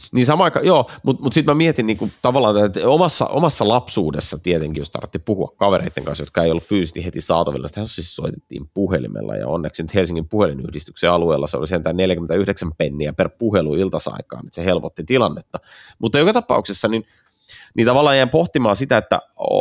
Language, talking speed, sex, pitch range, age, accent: Finnish, 170 wpm, male, 85-120 Hz, 30-49, native